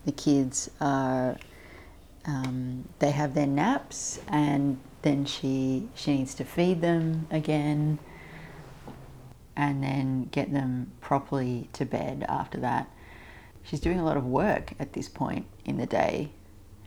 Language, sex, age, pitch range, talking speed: English, female, 40-59, 95-150 Hz, 135 wpm